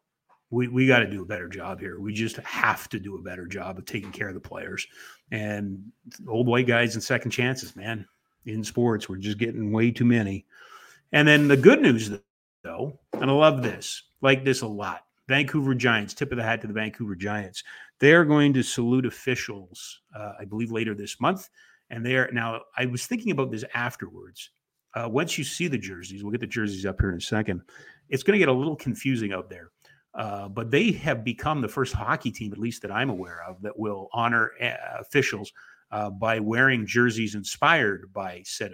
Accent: American